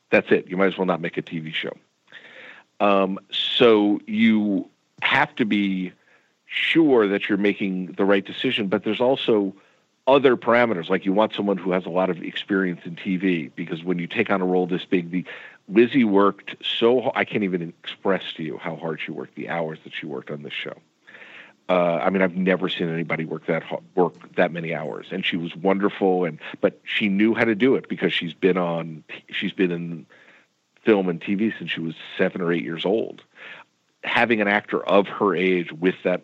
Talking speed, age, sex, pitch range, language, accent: 205 wpm, 50-69, male, 85-100 Hz, English, American